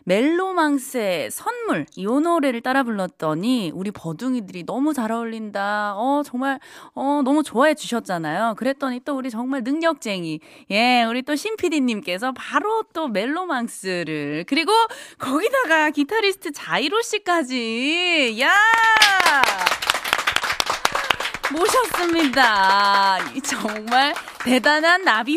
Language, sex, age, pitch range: Korean, female, 20-39, 205-310 Hz